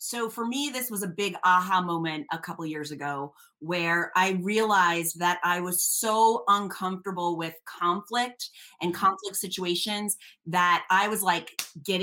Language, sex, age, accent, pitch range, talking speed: English, female, 30-49, American, 175-220 Hz, 160 wpm